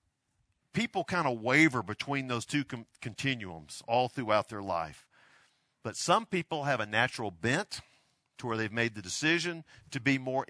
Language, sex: English, male